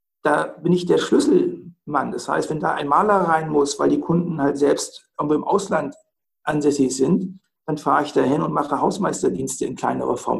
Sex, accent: male, German